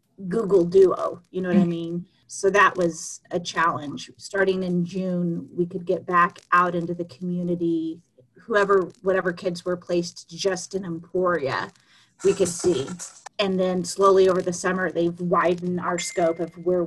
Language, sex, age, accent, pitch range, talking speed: English, female, 30-49, American, 170-190 Hz, 165 wpm